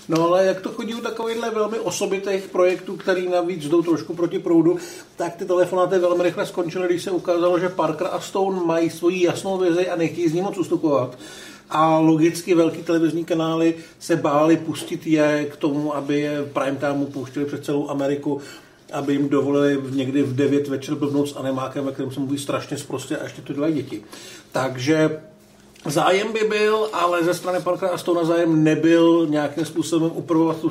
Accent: native